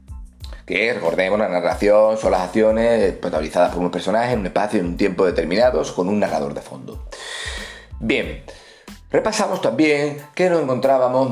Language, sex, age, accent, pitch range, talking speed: Spanish, male, 30-49, Spanish, 100-135 Hz, 165 wpm